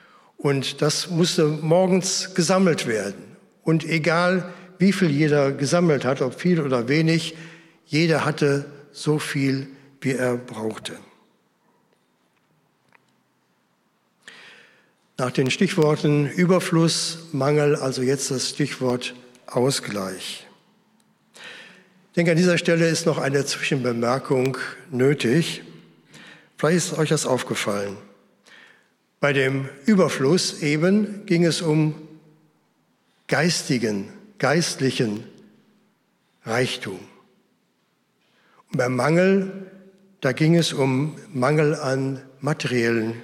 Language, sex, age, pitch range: German, male, 60-79, 135-170 Hz